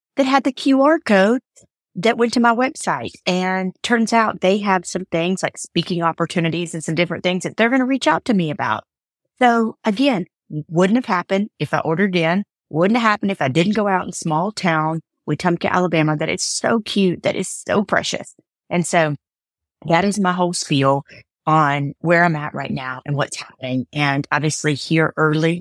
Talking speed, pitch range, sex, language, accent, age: 195 wpm, 145-180 Hz, female, English, American, 30-49